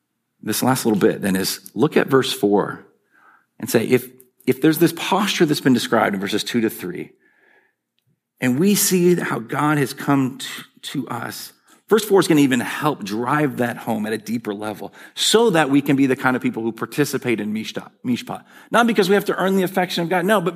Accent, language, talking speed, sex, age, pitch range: American, English, 215 wpm, male, 40-59, 110-175 Hz